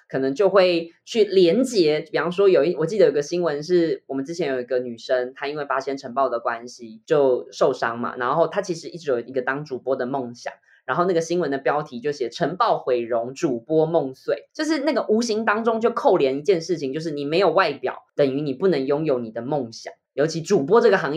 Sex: female